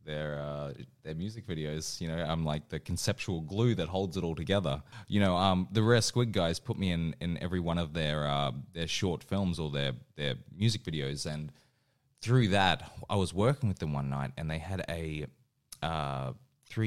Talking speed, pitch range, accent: 200 wpm, 80-105 Hz, Australian